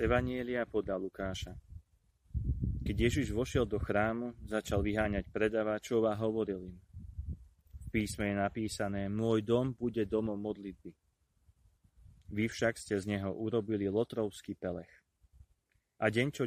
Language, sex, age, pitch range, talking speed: Slovak, male, 30-49, 95-110 Hz, 125 wpm